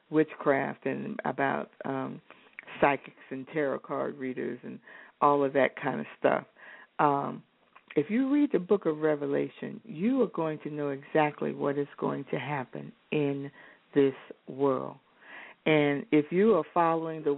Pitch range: 150-195 Hz